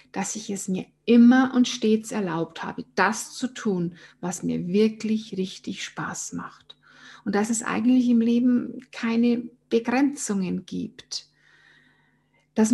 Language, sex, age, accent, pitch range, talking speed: German, female, 50-69, German, 200-245 Hz, 130 wpm